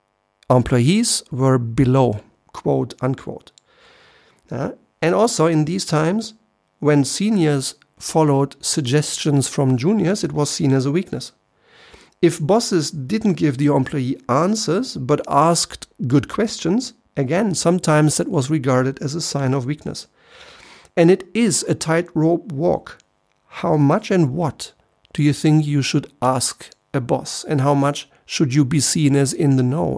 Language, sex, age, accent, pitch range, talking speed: German, male, 50-69, German, 135-170 Hz, 140 wpm